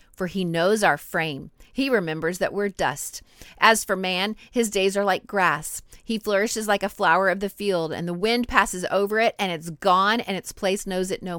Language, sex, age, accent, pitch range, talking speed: English, female, 30-49, American, 175-220 Hz, 215 wpm